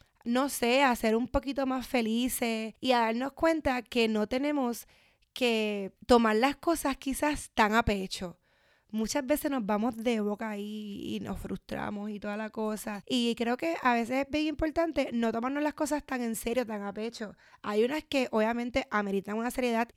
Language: Spanish